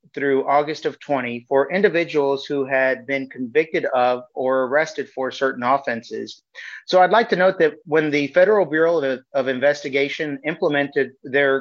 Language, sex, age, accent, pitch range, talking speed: English, male, 40-59, American, 135-160 Hz, 160 wpm